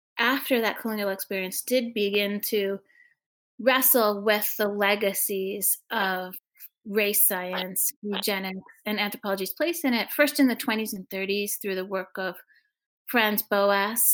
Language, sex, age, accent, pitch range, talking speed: English, female, 30-49, American, 200-255 Hz, 135 wpm